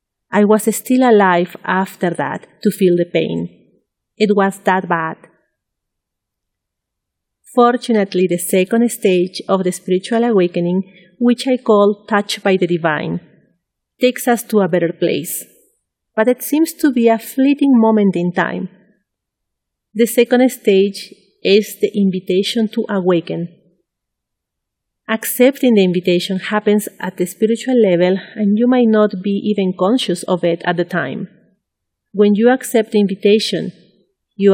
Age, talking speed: 40-59, 135 wpm